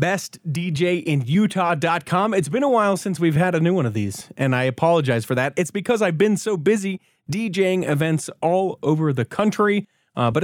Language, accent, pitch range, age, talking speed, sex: English, American, 135-180 Hz, 30-49, 185 wpm, male